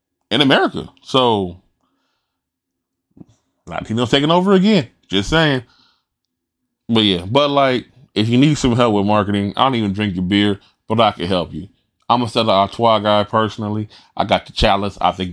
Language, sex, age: English, male, 20-39